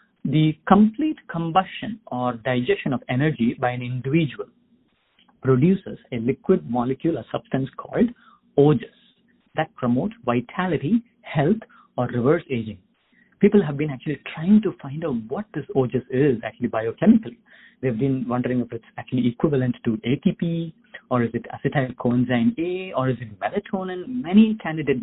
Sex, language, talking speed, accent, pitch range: male, English, 145 wpm, Indian, 125-195 Hz